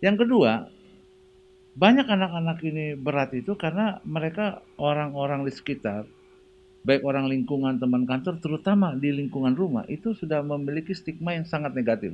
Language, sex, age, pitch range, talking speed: Indonesian, male, 50-69, 125-190 Hz, 140 wpm